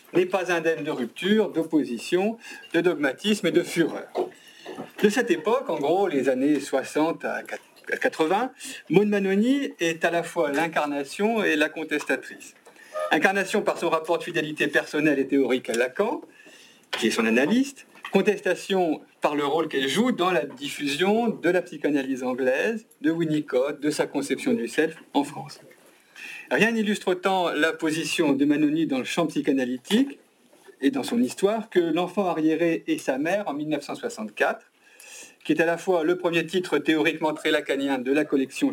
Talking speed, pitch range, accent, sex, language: 165 wpm, 150-220 Hz, French, male, French